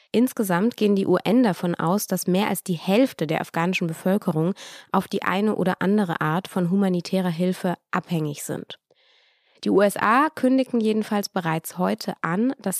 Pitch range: 175-220 Hz